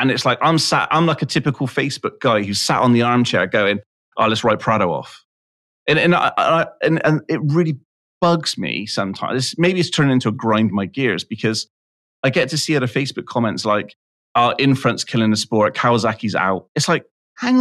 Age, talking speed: 30-49, 210 wpm